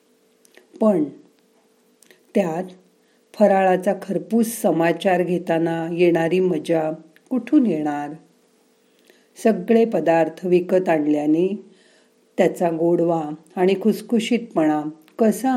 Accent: native